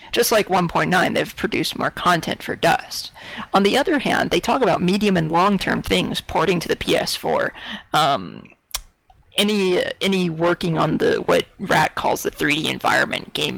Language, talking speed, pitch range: English, 170 wpm, 170-220 Hz